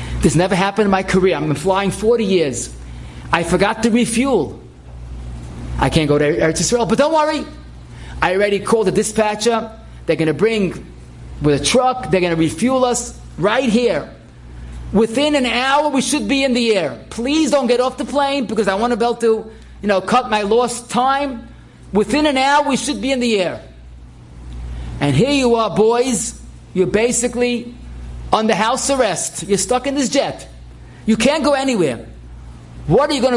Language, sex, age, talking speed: English, male, 30-49, 180 wpm